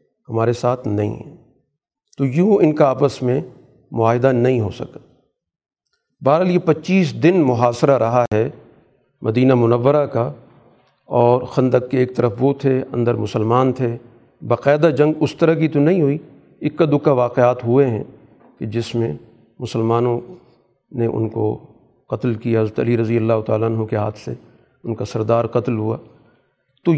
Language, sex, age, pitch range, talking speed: Urdu, male, 50-69, 115-135 Hz, 160 wpm